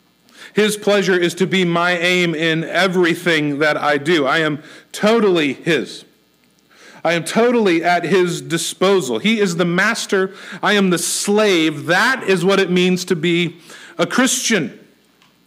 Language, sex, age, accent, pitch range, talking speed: English, male, 50-69, American, 180-225 Hz, 150 wpm